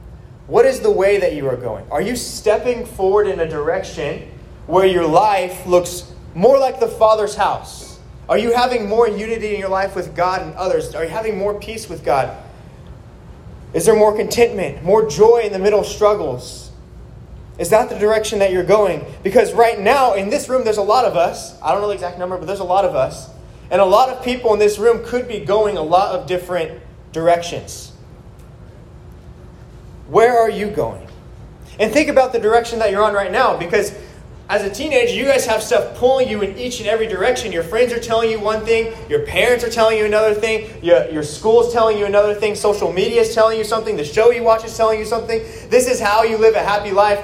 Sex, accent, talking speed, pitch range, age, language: male, American, 220 wpm, 185-225 Hz, 20-39, English